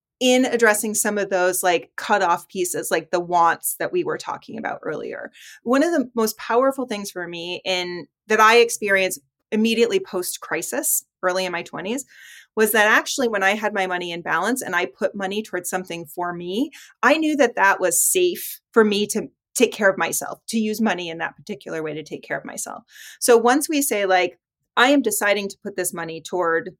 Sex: female